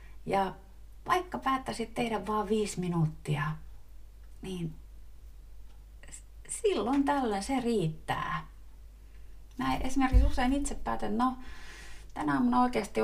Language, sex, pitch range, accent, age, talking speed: Finnish, female, 145-225 Hz, native, 30-49, 100 wpm